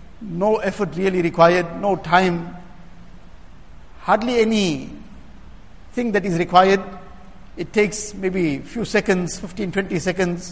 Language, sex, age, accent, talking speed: English, male, 60-79, Indian, 115 wpm